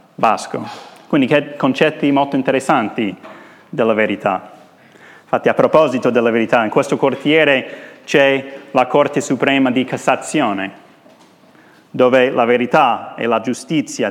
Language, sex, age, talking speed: Italian, male, 30-49, 120 wpm